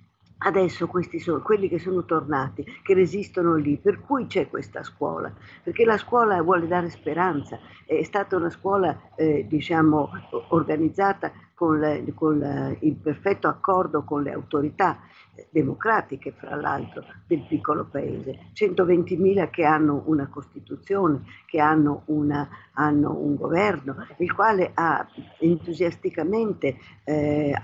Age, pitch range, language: 50-69, 145-180 Hz, Italian